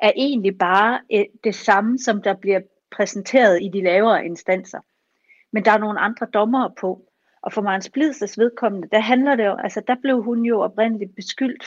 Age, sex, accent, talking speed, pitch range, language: 40-59, female, native, 190 wpm, 190-230 Hz, Danish